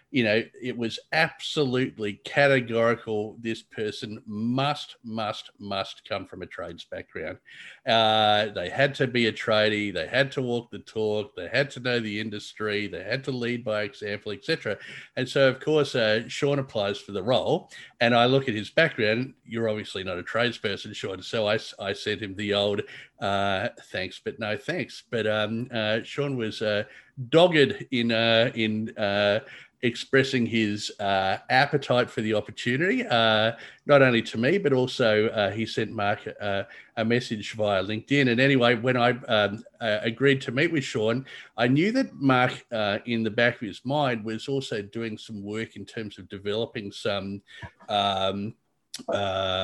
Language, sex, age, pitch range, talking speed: English, male, 50-69, 105-130 Hz, 175 wpm